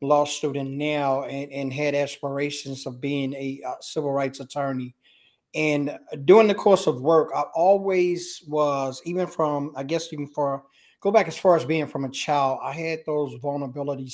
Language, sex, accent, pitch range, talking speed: English, male, American, 145-170 Hz, 180 wpm